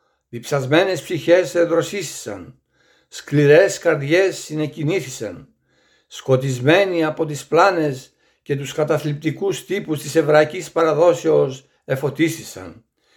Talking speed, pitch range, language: 80 wpm, 140-170 Hz, Greek